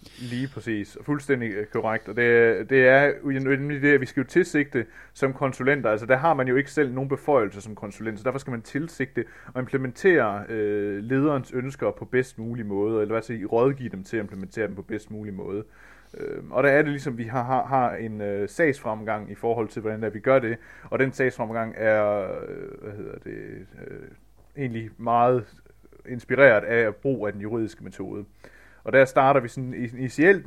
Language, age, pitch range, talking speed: Danish, 30-49, 105-130 Hz, 195 wpm